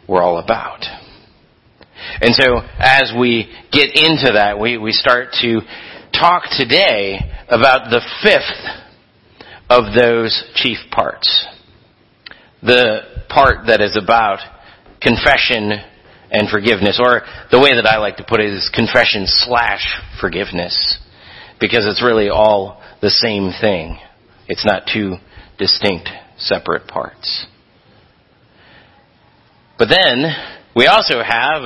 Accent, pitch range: American, 115-170 Hz